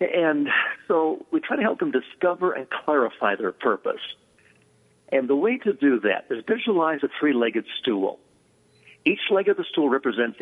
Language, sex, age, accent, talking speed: English, male, 60-79, American, 165 wpm